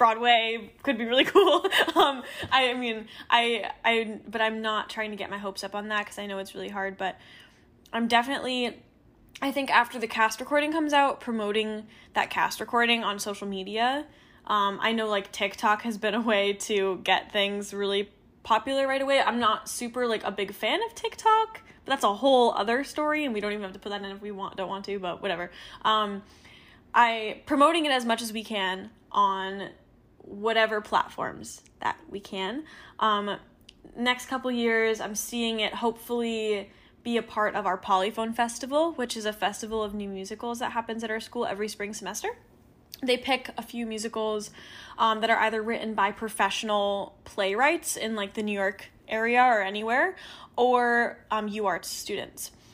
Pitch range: 205-240 Hz